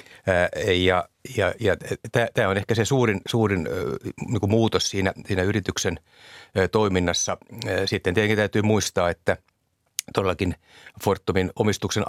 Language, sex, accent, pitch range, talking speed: Finnish, male, native, 90-105 Hz, 105 wpm